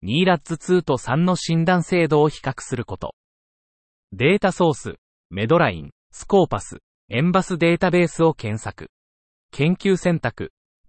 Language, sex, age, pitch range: Japanese, male, 30-49, 120-170 Hz